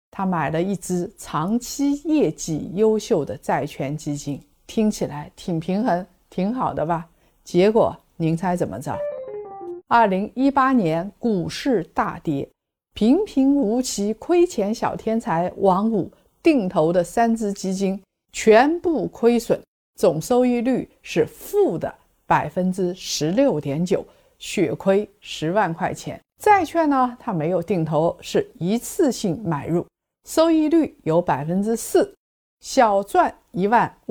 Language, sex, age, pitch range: Chinese, female, 50-69, 175-260 Hz